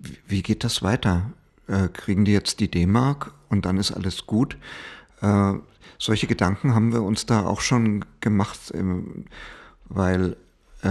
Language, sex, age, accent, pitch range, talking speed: German, male, 50-69, German, 90-110 Hz, 130 wpm